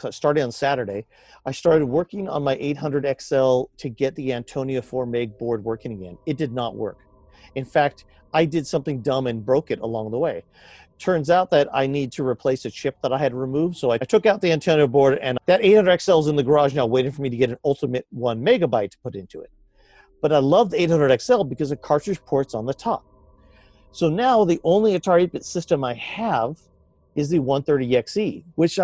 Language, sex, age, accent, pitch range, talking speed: English, male, 40-59, American, 135-195 Hz, 210 wpm